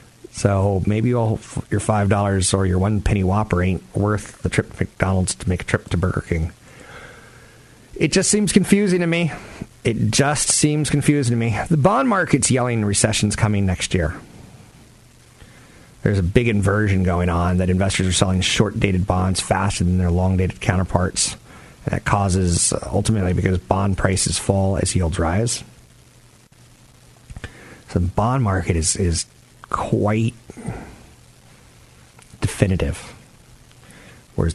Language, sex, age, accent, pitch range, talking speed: English, male, 40-59, American, 90-120 Hz, 135 wpm